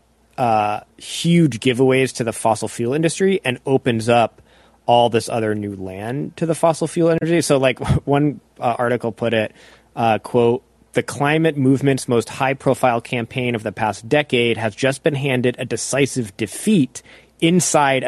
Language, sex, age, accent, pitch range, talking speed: English, male, 20-39, American, 115-145 Hz, 165 wpm